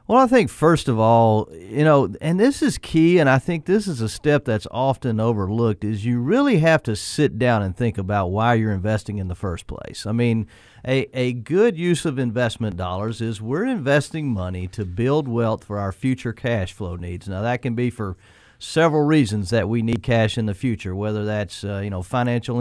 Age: 40-59